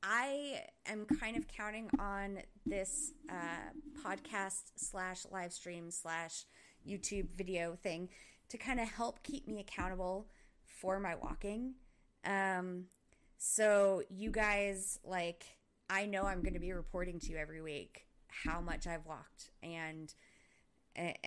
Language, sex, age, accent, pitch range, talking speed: English, female, 20-39, American, 170-210 Hz, 135 wpm